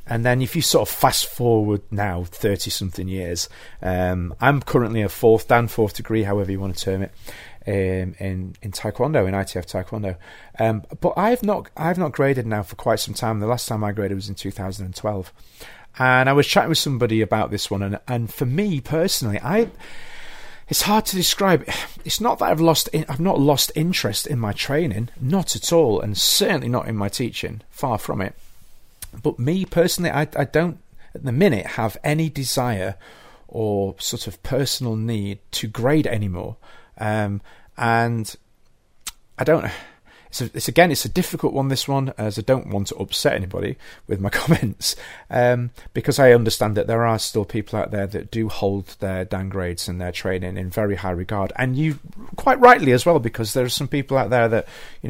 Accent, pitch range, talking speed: British, 100-145 Hz, 195 wpm